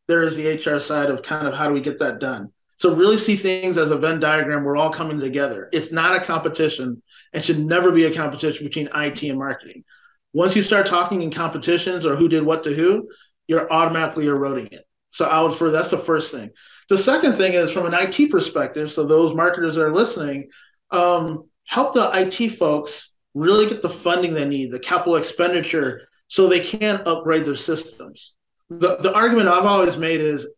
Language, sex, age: English, male, 30-49